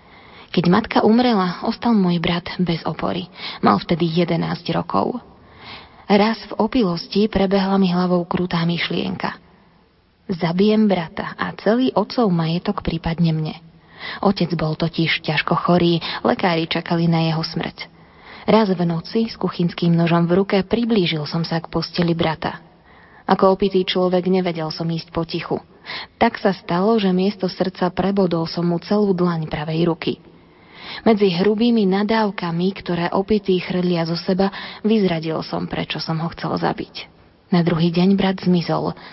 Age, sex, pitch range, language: 20-39, female, 170-205 Hz, Slovak